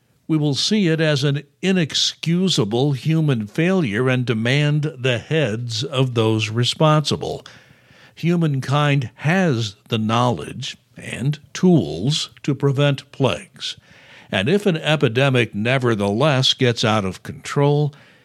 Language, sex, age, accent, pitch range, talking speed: English, male, 60-79, American, 110-145 Hz, 110 wpm